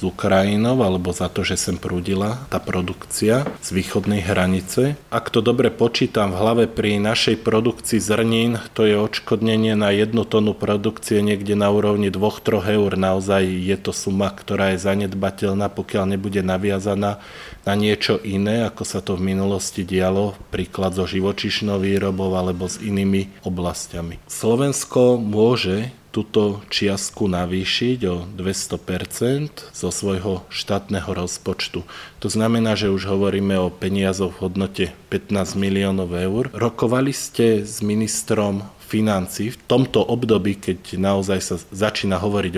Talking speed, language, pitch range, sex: 135 wpm, Slovak, 95-110 Hz, male